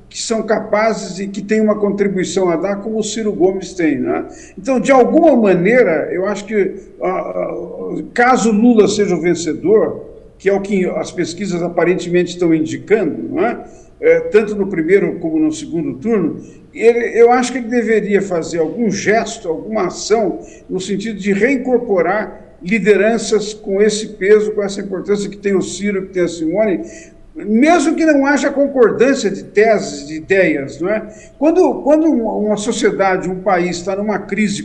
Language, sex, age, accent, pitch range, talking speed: English, male, 50-69, Brazilian, 195-255 Hz, 165 wpm